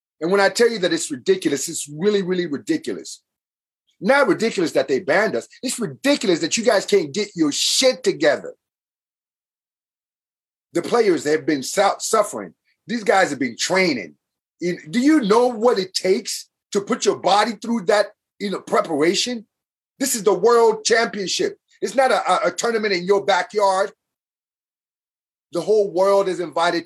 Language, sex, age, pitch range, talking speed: English, male, 30-49, 170-245 Hz, 155 wpm